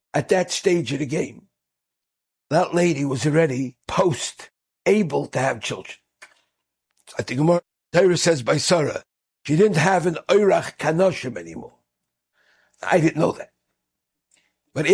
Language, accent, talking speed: English, American, 135 wpm